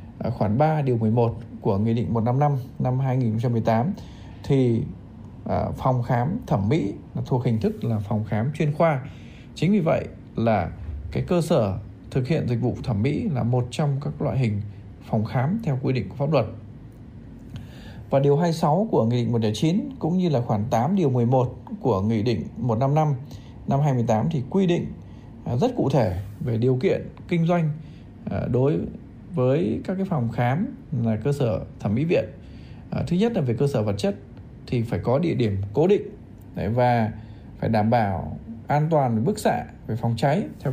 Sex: male